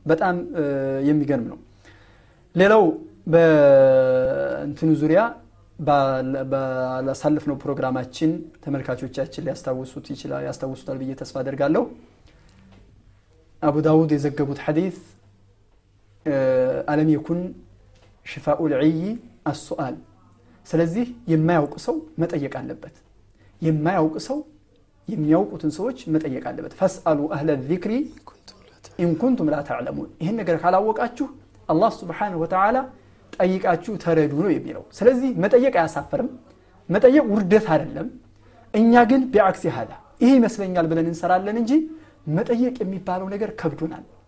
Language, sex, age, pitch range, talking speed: Amharic, male, 30-49, 135-210 Hz, 110 wpm